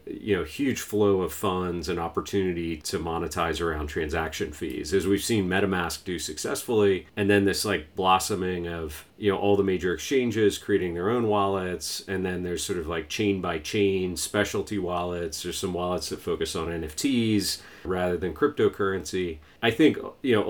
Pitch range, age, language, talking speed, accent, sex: 90-105 Hz, 40-59, English, 175 wpm, American, male